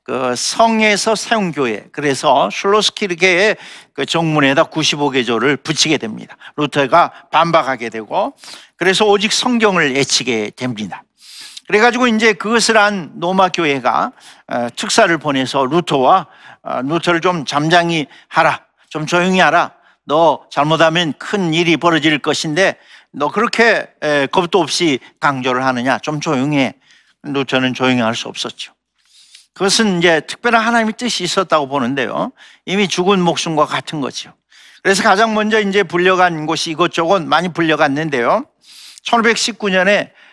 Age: 50-69